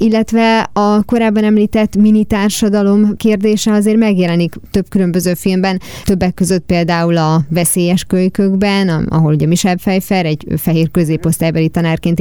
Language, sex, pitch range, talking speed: Hungarian, female, 165-200 Hz, 120 wpm